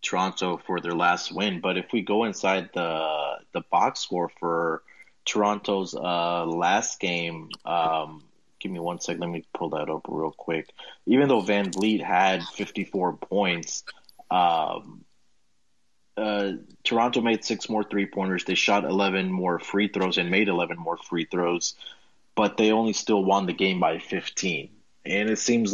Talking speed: 160 wpm